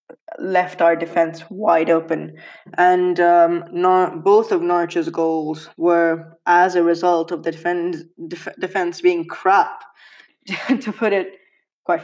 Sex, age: female, 20-39